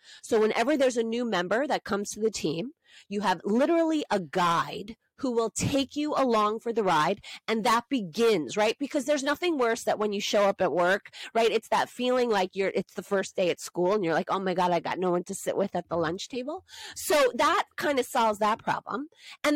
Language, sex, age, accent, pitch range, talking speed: English, female, 30-49, American, 185-235 Hz, 235 wpm